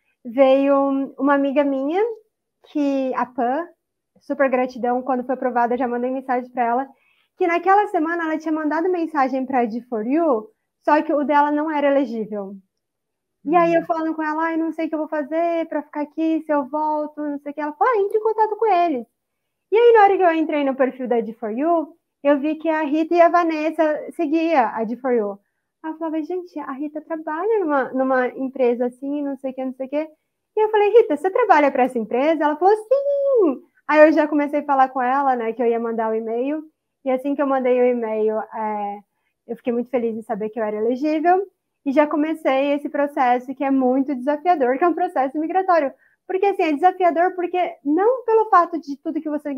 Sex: female